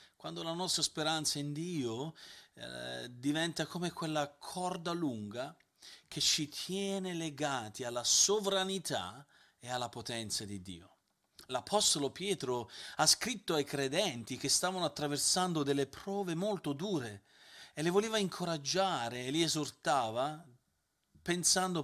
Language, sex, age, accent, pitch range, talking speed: Italian, male, 40-59, native, 120-165 Hz, 120 wpm